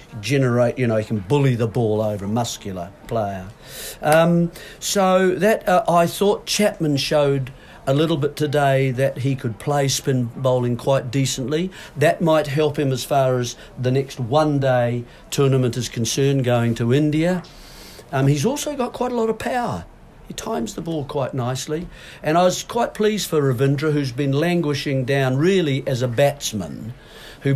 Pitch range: 125-155 Hz